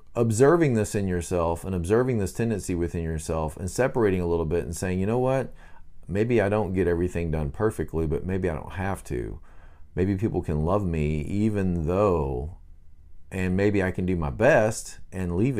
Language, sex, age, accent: English, male, 40-59, American